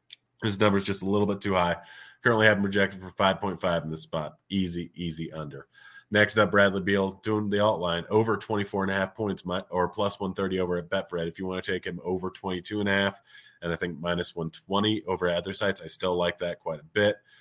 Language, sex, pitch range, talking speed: English, male, 85-105 Hz, 210 wpm